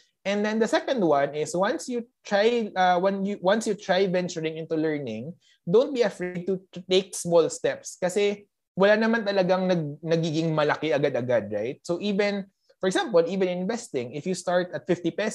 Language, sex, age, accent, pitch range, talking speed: Filipino, male, 20-39, native, 150-195 Hz, 175 wpm